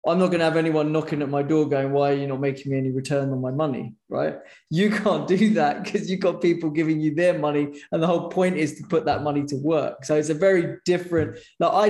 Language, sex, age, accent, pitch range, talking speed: English, male, 20-39, British, 145-180 Hz, 265 wpm